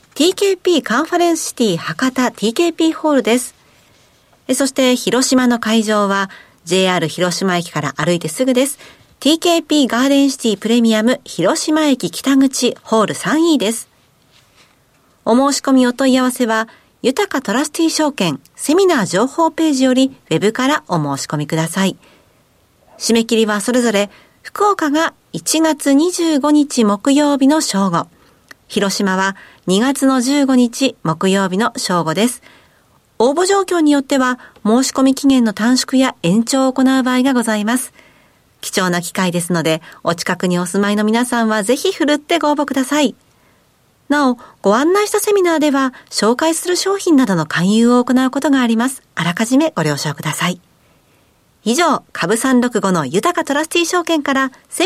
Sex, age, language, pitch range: female, 40-59, Japanese, 205-295 Hz